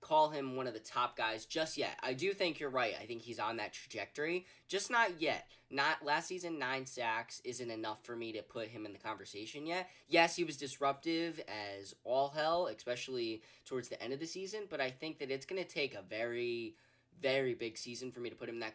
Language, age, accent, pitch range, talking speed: English, 10-29, American, 120-170 Hz, 235 wpm